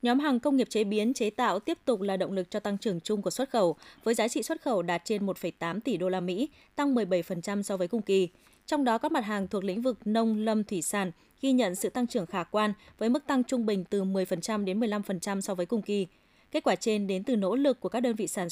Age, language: 20-39, Vietnamese